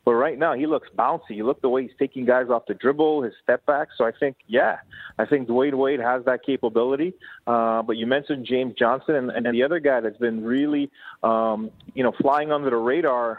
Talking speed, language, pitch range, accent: 230 wpm, English, 120-150 Hz, American